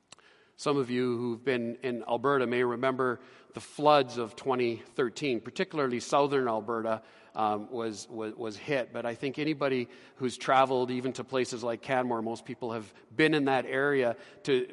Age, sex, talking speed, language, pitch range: 40-59, male, 165 wpm, English, 125-180 Hz